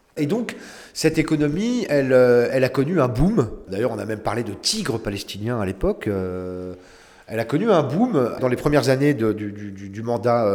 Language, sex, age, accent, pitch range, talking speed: French, male, 40-59, French, 110-155 Hz, 195 wpm